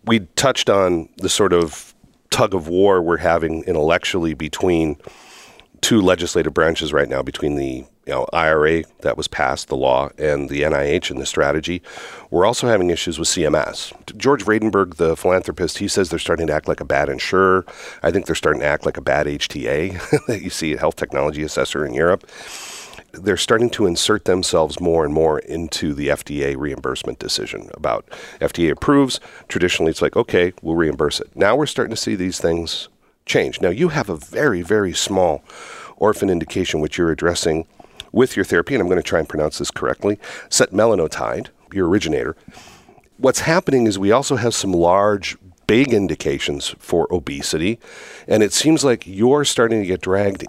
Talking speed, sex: 180 wpm, male